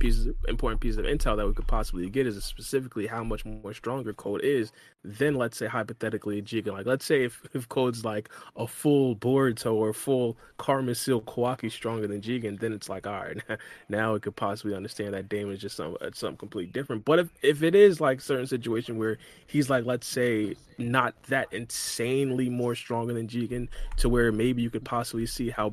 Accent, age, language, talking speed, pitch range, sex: American, 20-39, English, 200 wpm, 110-130 Hz, male